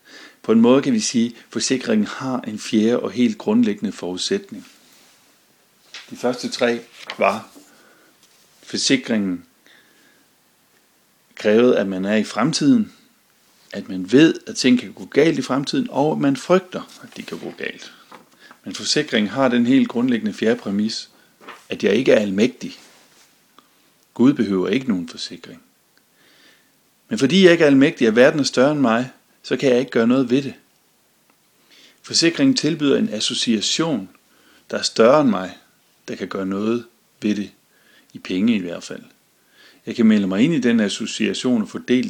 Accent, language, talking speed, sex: native, Danish, 160 wpm, male